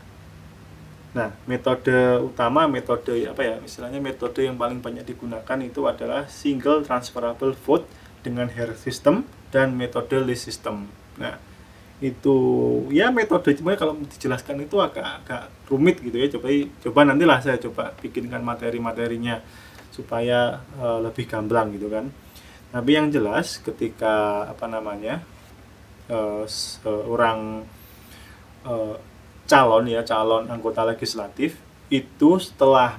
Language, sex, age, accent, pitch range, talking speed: Indonesian, male, 20-39, native, 100-130 Hz, 120 wpm